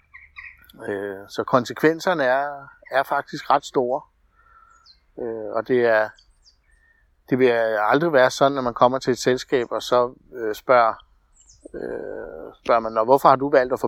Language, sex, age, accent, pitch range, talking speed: Danish, male, 60-79, native, 110-140 Hz, 155 wpm